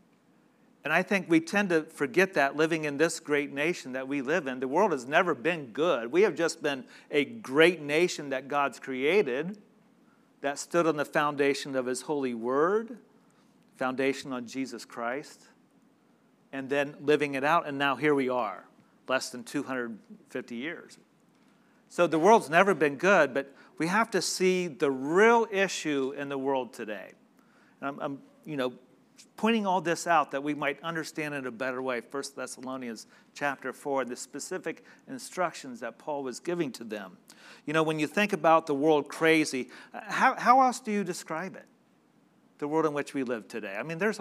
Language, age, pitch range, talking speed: English, 40-59, 135-225 Hz, 180 wpm